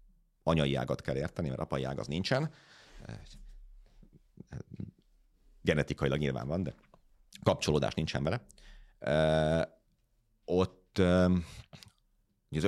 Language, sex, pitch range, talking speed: Hungarian, male, 65-90 Hz, 85 wpm